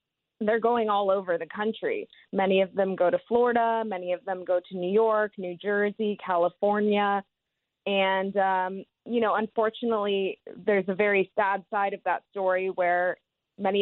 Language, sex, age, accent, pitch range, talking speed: English, female, 20-39, American, 185-220 Hz, 160 wpm